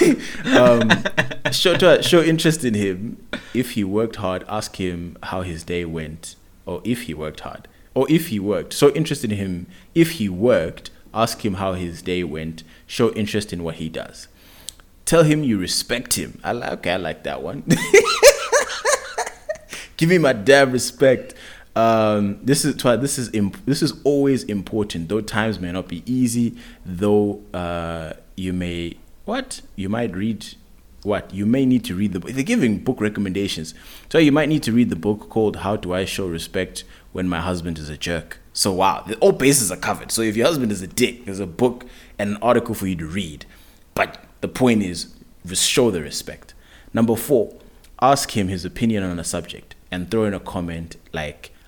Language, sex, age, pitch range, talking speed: English, male, 20-39, 90-125 Hz, 190 wpm